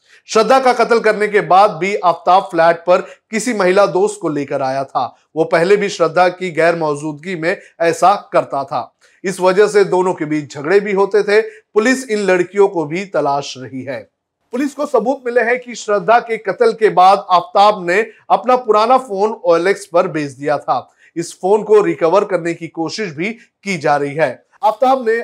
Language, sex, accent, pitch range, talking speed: Hindi, male, native, 170-215 Hz, 190 wpm